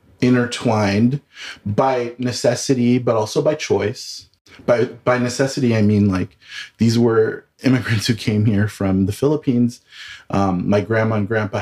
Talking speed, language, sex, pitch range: 140 wpm, English, male, 100-125 Hz